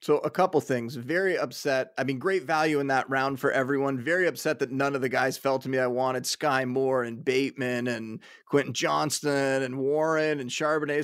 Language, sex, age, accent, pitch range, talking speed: English, male, 30-49, American, 130-160 Hz, 205 wpm